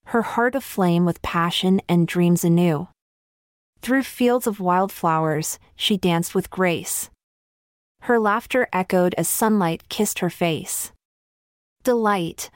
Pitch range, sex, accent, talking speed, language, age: 175-220 Hz, female, American, 120 wpm, English, 30-49